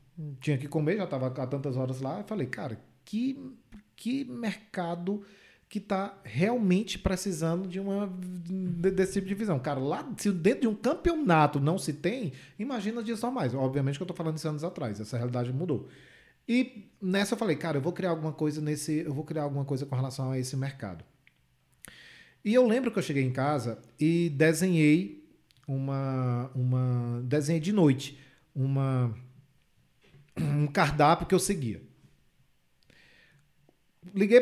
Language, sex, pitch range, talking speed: Portuguese, male, 135-190 Hz, 165 wpm